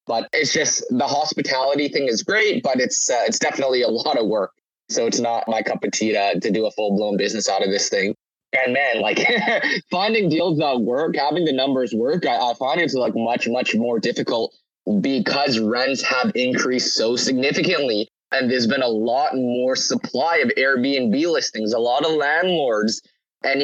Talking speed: 195 wpm